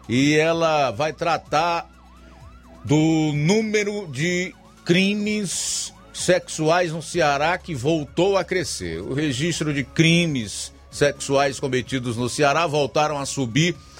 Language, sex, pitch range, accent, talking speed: Portuguese, male, 140-175 Hz, Brazilian, 110 wpm